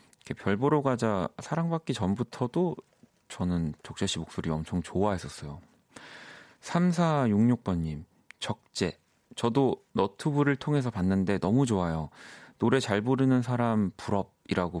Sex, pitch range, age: male, 90-125 Hz, 40-59